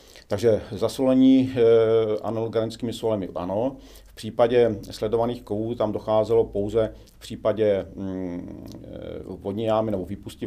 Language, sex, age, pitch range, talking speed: Czech, male, 40-59, 95-110 Hz, 115 wpm